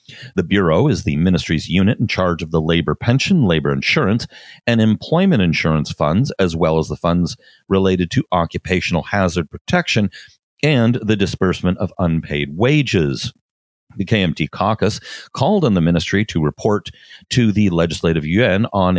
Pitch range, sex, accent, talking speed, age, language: 85-110 Hz, male, American, 150 wpm, 40-59, English